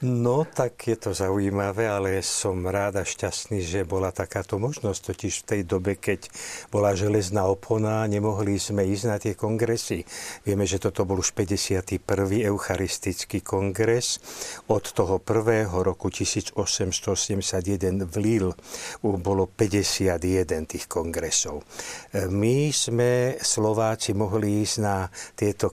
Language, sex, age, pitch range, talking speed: Slovak, male, 60-79, 95-110 Hz, 125 wpm